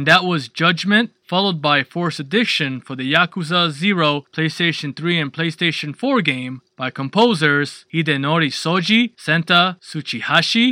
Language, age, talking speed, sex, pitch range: English, 20-39, 135 wpm, male, 145-195 Hz